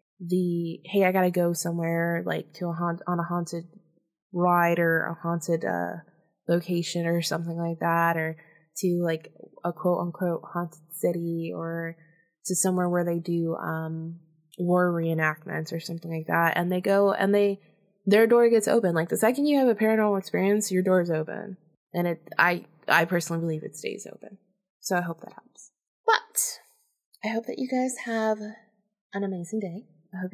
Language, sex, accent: English, female, American